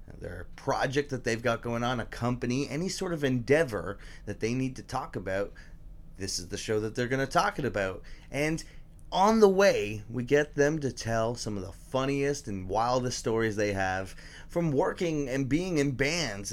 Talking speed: 195 wpm